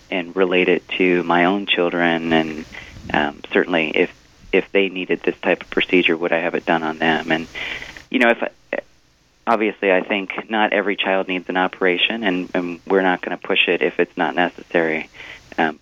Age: 30-49